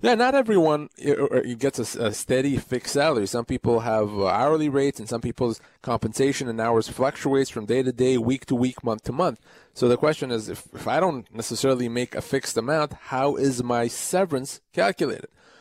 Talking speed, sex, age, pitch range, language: 180 wpm, male, 30-49, 115-140 Hz, English